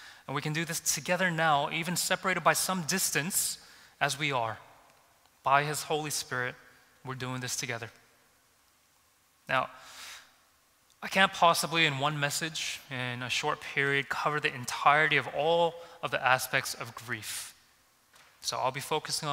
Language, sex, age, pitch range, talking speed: English, male, 20-39, 130-165 Hz, 150 wpm